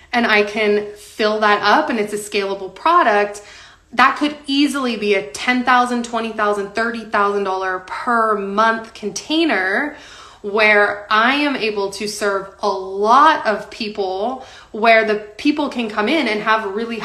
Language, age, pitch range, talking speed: English, 20-39, 200-255 Hz, 145 wpm